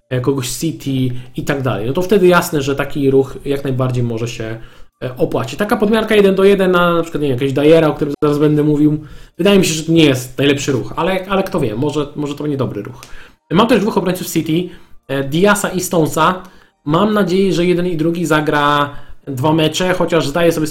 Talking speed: 205 wpm